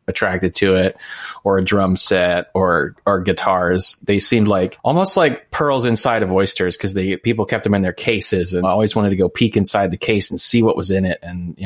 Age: 30-49